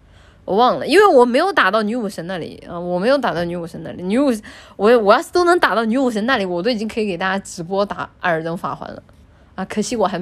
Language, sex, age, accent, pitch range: Chinese, female, 20-39, native, 175-255 Hz